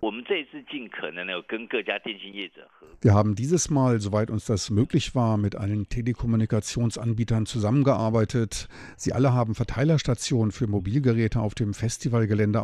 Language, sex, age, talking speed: German, male, 50-69, 105 wpm